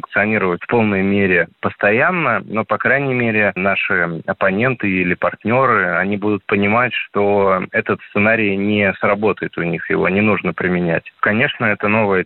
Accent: native